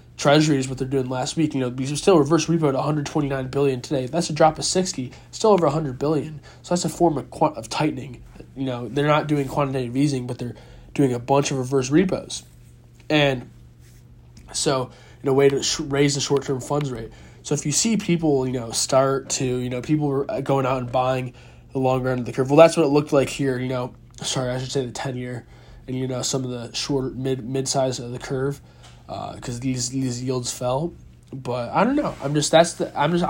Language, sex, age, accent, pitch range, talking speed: English, male, 20-39, American, 125-145 Hz, 230 wpm